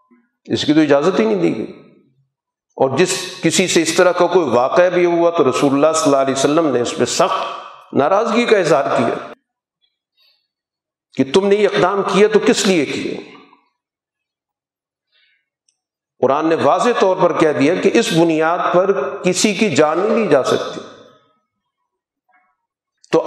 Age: 50-69